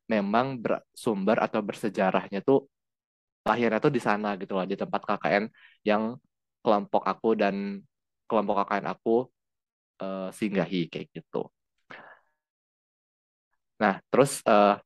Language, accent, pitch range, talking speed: Indonesian, native, 95-110 Hz, 120 wpm